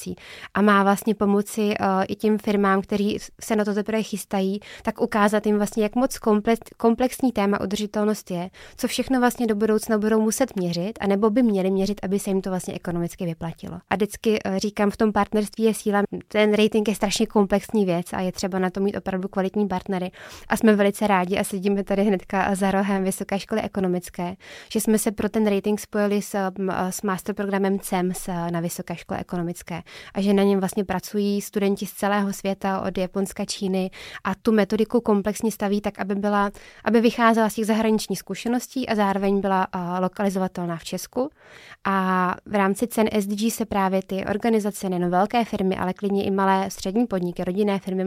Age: 20-39